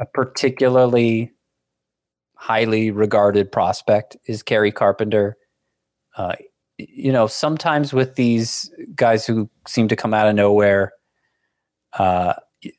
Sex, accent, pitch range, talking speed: male, American, 100-120 Hz, 110 wpm